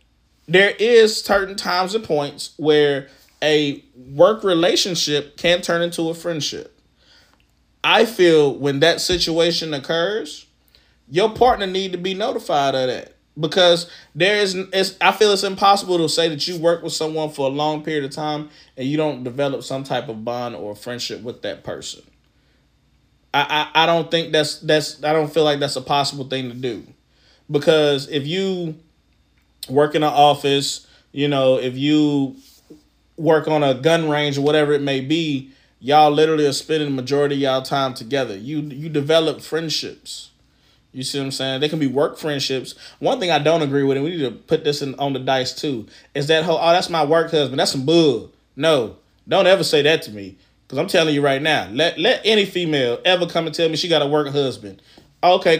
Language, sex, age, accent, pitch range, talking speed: English, male, 20-39, American, 140-165 Hz, 195 wpm